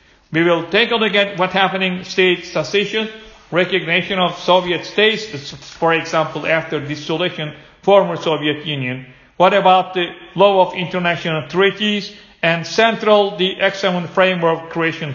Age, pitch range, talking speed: 50-69, 165-200 Hz, 135 wpm